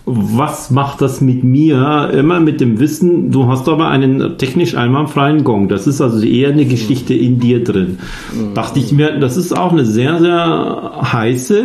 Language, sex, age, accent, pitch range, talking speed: German, male, 50-69, German, 120-150 Hz, 185 wpm